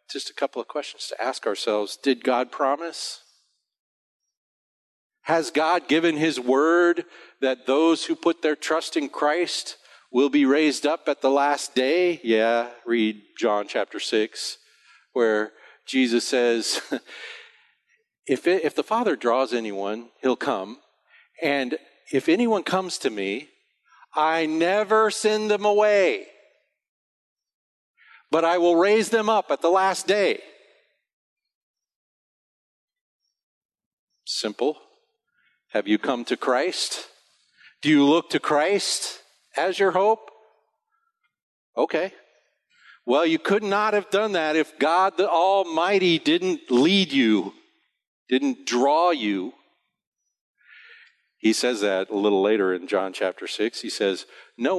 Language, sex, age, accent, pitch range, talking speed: English, male, 40-59, American, 130-210 Hz, 125 wpm